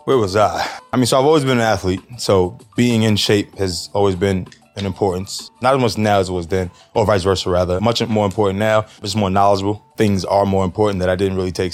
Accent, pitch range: American, 95-105 Hz